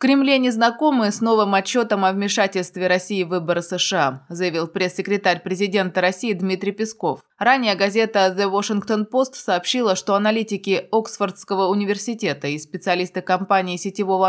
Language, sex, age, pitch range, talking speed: Russian, female, 20-39, 180-225 Hz, 135 wpm